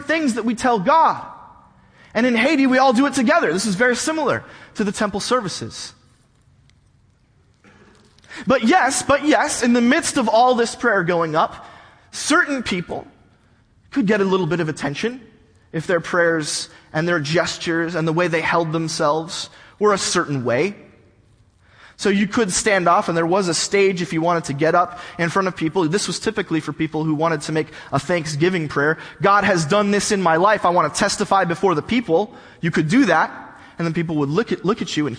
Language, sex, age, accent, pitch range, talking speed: English, male, 20-39, American, 155-230 Hz, 205 wpm